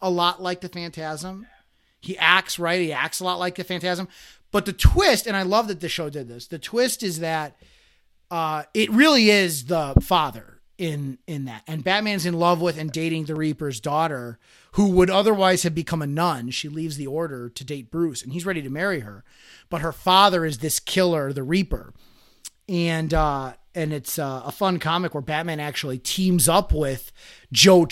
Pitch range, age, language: 155-200 Hz, 30-49, English